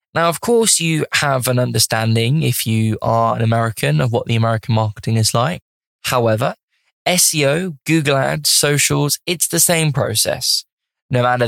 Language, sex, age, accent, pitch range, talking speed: English, male, 10-29, British, 115-150 Hz, 155 wpm